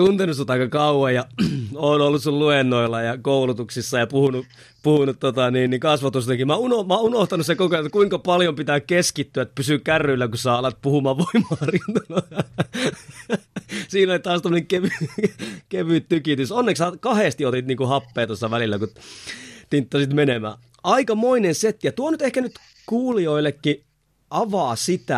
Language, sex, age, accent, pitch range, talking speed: Finnish, male, 30-49, native, 125-180 Hz, 165 wpm